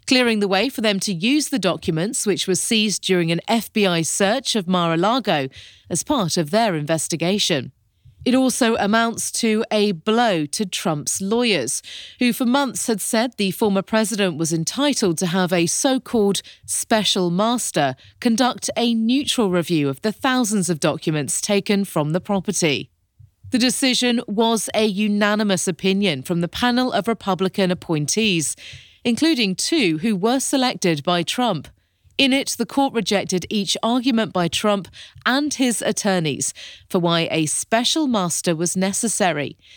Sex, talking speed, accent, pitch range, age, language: female, 150 wpm, British, 180-240 Hz, 30-49, English